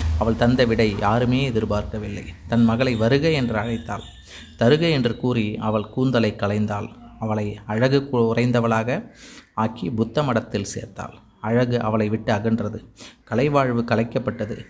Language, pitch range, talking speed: Tamil, 110-125 Hz, 115 wpm